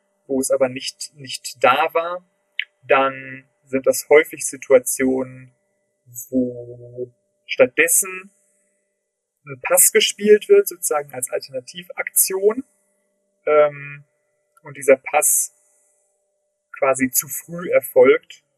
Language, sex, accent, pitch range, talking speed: German, male, German, 130-195 Hz, 95 wpm